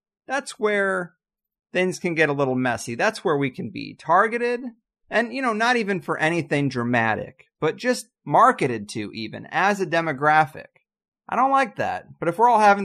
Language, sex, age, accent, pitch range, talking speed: English, male, 30-49, American, 140-210 Hz, 180 wpm